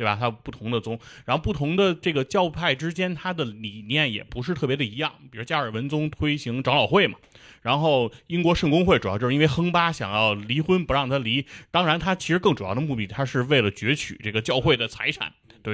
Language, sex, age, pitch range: Chinese, male, 20-39, 115-160 Hz